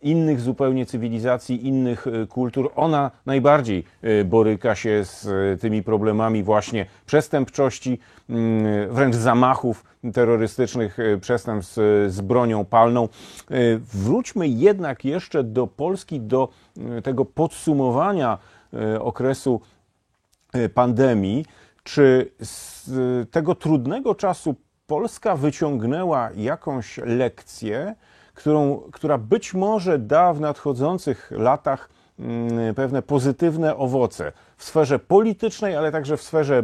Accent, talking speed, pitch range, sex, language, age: native, 95 wpm, 115-155 Hz, male, Polish, 40-59